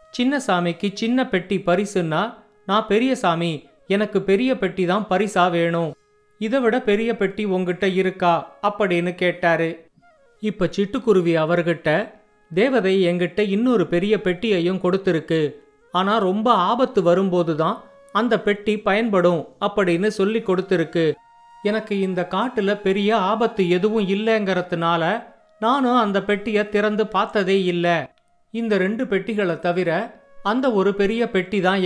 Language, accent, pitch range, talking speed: Tamil, native, 180-215 Hz, 115 wpm